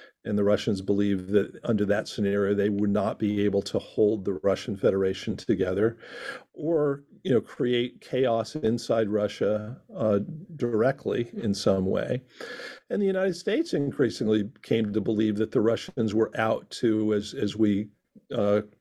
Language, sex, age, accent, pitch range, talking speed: English, male, 50-69, American, 105-125 Hz, 155 wpm